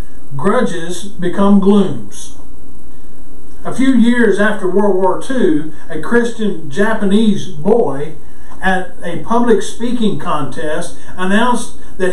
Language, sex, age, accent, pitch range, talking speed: English, male, 50-69, American, 185-230 Hz, 105 wpm